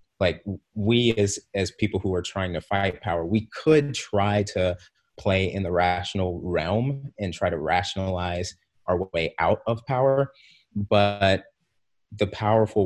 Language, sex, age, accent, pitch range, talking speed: English, male, 30-49, American, 90-105 Hz, 150 wpm